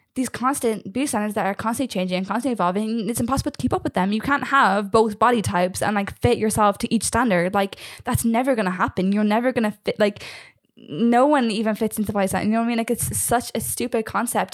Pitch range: 200-245 Hz